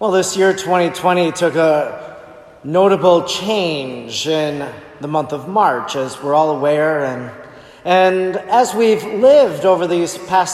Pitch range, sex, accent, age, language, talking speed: 165-200 Hz, male, American, 40-59, English, 140 wpm